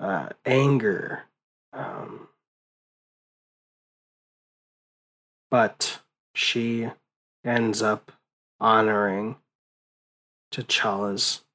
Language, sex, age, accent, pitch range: English, male, 20-39, American, 110-130 Hz